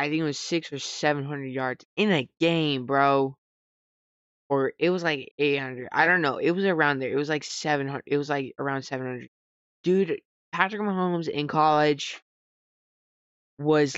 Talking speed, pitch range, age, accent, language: 170 wpm, 130-160 Hz, 20-39, American, English